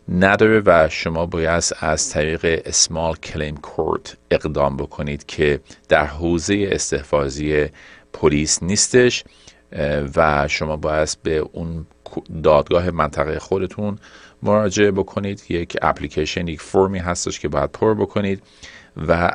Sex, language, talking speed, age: male, Persian, 115 wpm, 40-59